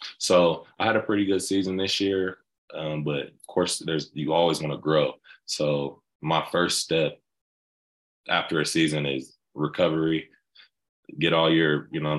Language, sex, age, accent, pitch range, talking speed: English, male, 20-39, American, 75-80 Hz, 165 wpm